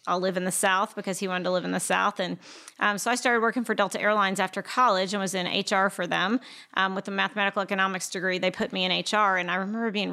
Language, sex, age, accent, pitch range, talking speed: English, female, 30-49, American, 190-210 Hz, 275 wpm